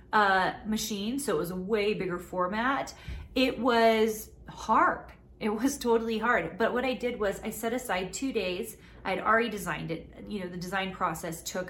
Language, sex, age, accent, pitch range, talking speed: English, female, 30-49, American, 180-225 Hz, 185 wpm